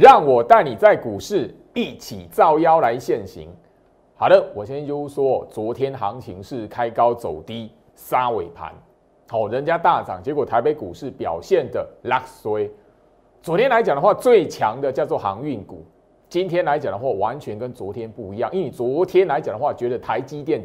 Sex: male